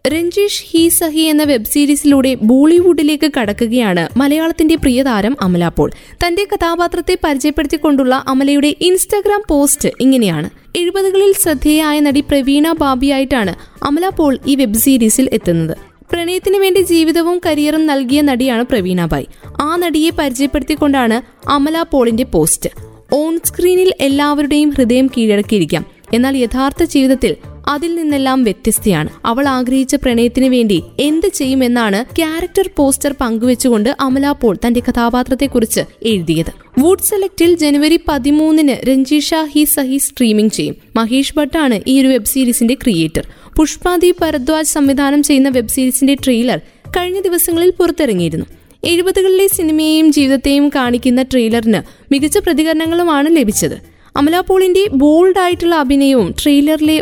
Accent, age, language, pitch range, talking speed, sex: native, 20-39, Malayalam, 250-325 Hz, 115 wpm, female